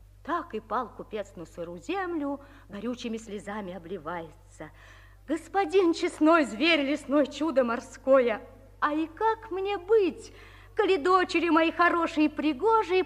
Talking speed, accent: 120 wpm, native